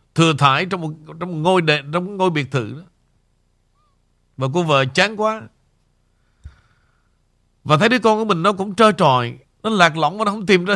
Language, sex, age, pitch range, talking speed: Vietnamese, male, 60-79, 145-190 Hz, 200 wpm